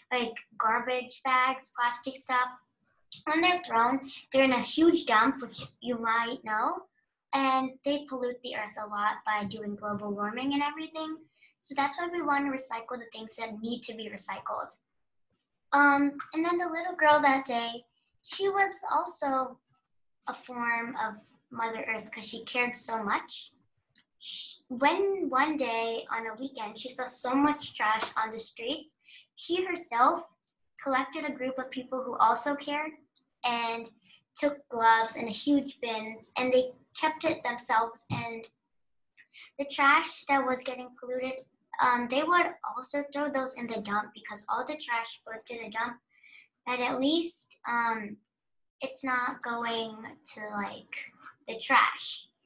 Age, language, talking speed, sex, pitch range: 10-29, English, 155 wpm, male, 230-285 Hz